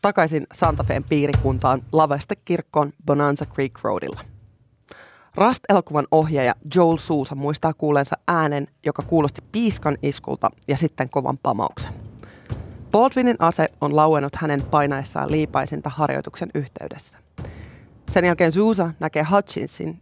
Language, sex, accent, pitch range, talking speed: Finnish, female, native, 140-175 Hz, 110 wpm